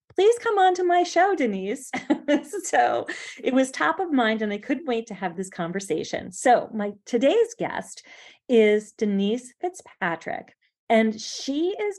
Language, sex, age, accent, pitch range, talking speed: English, female, 40-59, American, 185-260 Hz, 155 wpm